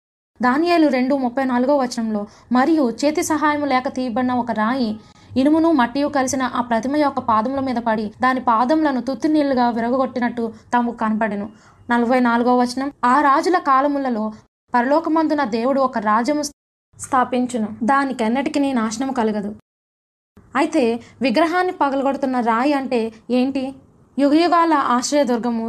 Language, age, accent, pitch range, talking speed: Telugu, 20-39, native, 235-285 Hz, 110 wpm